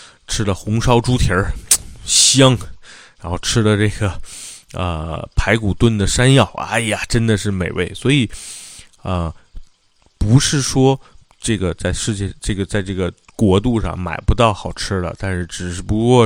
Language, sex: Chinese, male